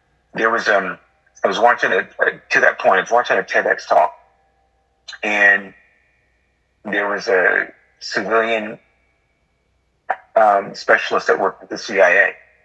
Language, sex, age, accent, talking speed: English, male, 50-69, American, 135 wpm